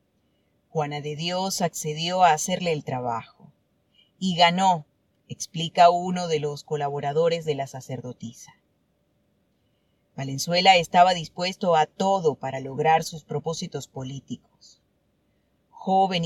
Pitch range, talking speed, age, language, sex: 145-185 Hz, 105 wpm, 30-49, Spanish, female